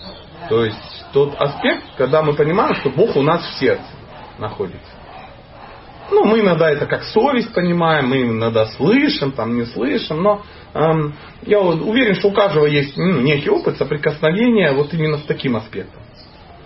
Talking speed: 155 wpm